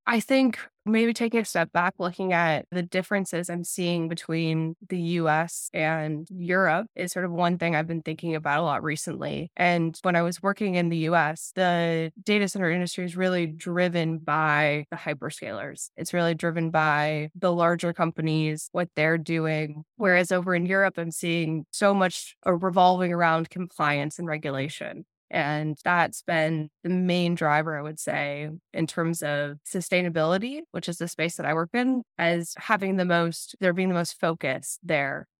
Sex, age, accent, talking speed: female, 20-39, American, 175 wpm